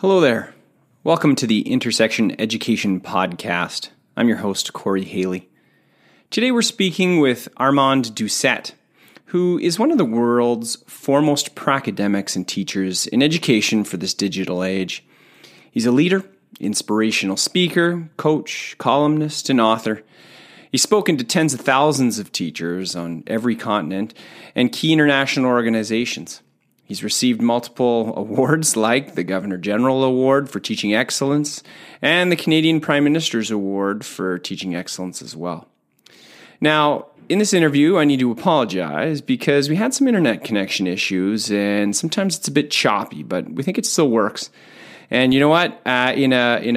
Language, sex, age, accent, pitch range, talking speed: English, male, 30-49, American, 105-150 Hz, 150 wpm